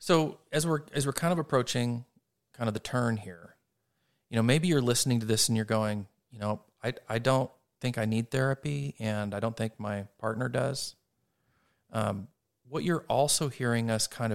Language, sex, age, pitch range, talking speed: English, male, 40-59, 105-125 Hz, 190 wpm